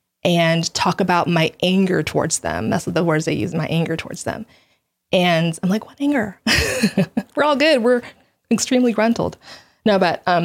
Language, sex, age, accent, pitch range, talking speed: English, female, 20-39, American, 170-225 Hz, 180 wpm